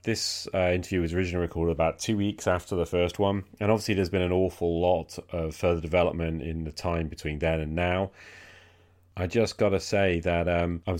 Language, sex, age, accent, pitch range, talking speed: English, male, 30-49, British, 80-95 Hz, 205 wpm